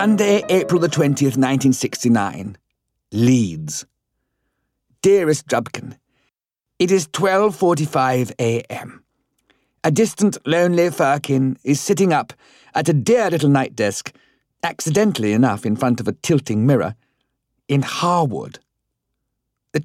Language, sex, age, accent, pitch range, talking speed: English, male, 50-69, British, 120-160 Hz, 110 wpm